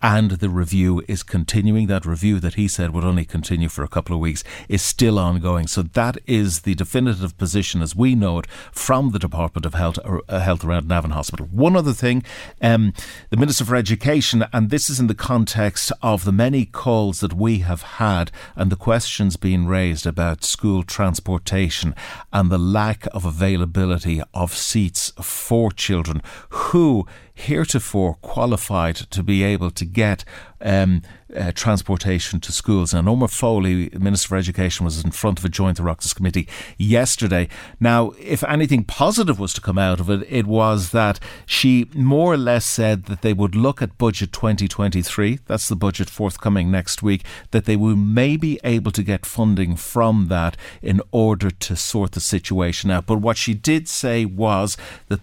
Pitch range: 90-115 Hz